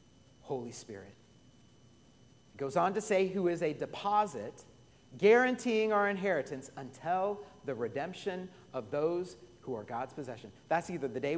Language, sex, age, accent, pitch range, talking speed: English, male, 40-59, American, 120-175 Hz, 140 wpm